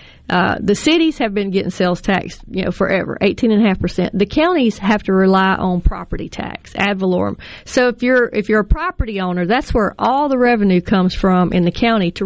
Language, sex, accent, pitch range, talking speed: English, female, American, 190-235 Hz, 200 wpm